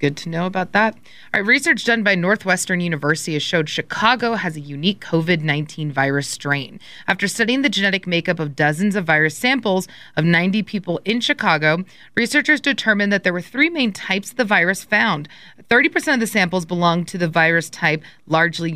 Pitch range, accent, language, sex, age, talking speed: 160-210 Hz, American, English, female, 30-49, 185 wpm